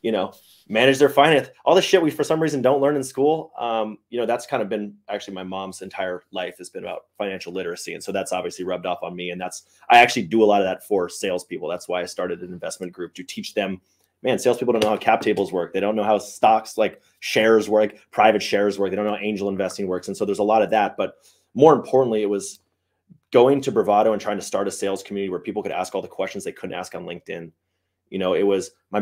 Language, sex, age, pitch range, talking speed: English, male, 20-39, 95-110 Hz, 265 wpm